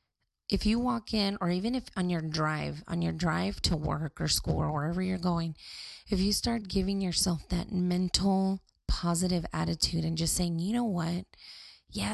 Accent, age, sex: American, 20-39, female